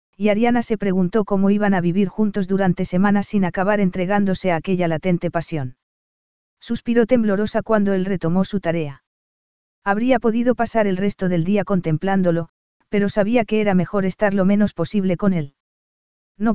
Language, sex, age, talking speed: Spanish, female, 40-59, 165 wpm